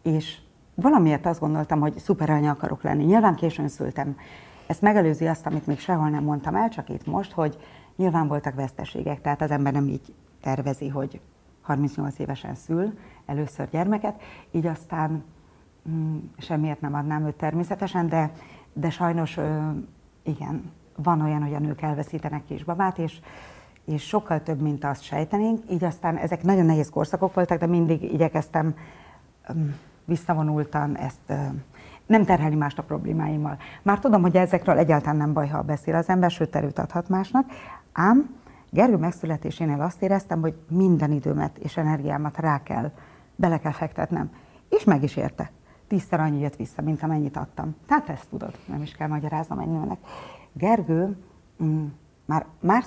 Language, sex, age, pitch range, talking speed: Hungarian, female, 30-49, 150-175 Hz, 155 wpm